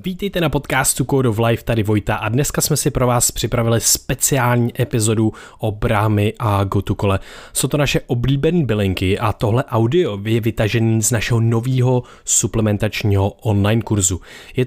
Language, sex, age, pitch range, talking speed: Czech, male, 20-39, 105-120 Hz, 160 wpm